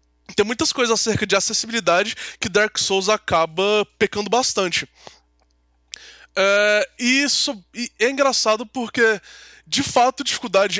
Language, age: Portuguese, 20-39